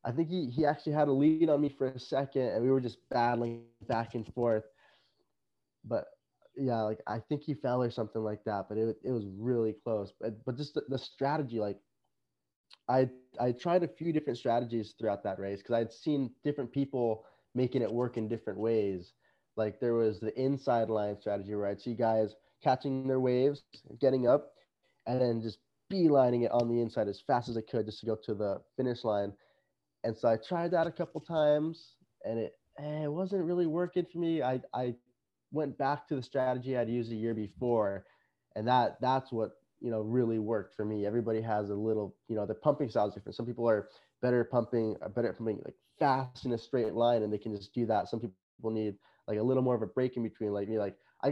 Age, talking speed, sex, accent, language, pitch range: 20-39, 220 wpm, male, American, English, 110-135 Hz